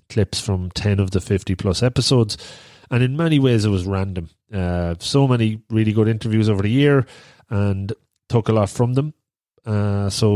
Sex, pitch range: male, 95-120 Hz